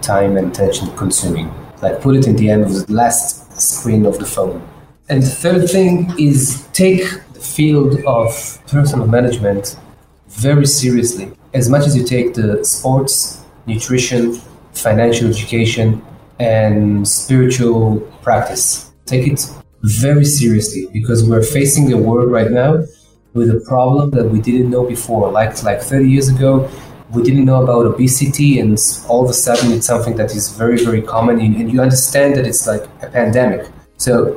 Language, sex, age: English, male, 30-49